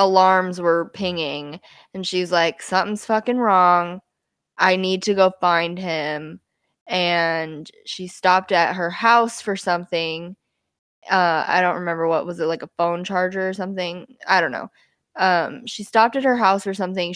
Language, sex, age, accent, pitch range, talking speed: English, female, 20-39, American, 180-210 Hz, 165 wpm